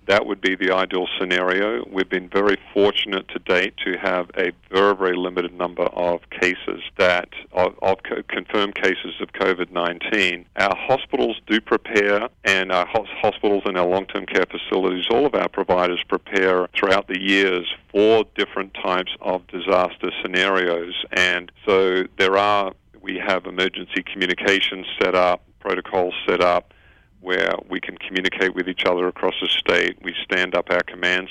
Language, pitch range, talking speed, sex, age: English, 90-95 Hz, 155 wpm, male, 50-69